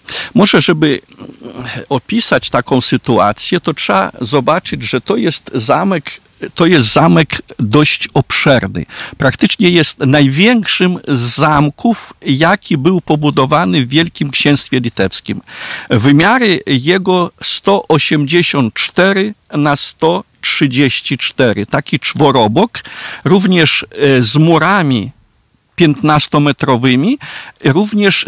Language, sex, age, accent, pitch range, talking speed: Polish, male, 50-69, native, 135-180 Hz, 85 wpm